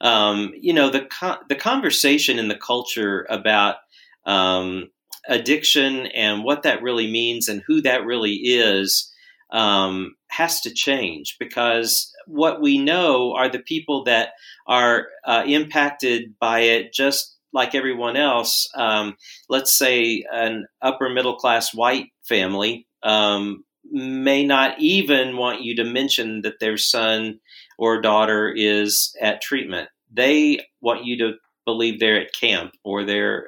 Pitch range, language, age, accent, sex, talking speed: 110-135 Hz, English, 40-59, American, male, 140 wpm